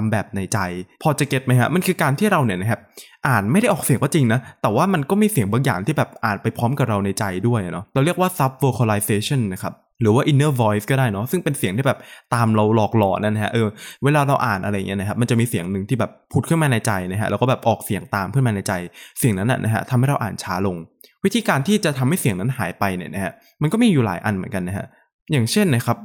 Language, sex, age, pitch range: Thai, male, 20-39, 105-140 Hz